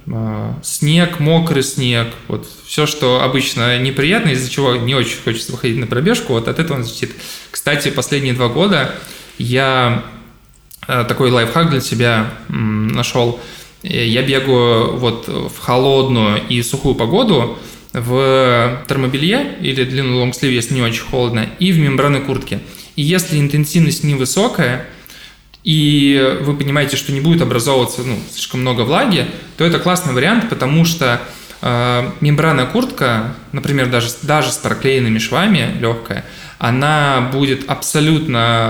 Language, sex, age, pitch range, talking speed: Russian, male, 20-39, 120-150 Hz, 130 wpm